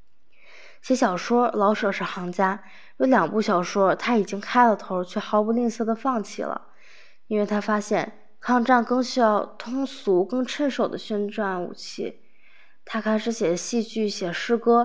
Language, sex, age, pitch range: Chinese, female, 20-39, 195-235 Hz